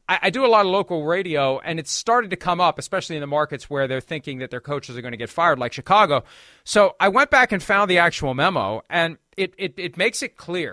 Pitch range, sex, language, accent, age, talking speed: 145-195 Hz, male, English, American, 40-59, 255 wpm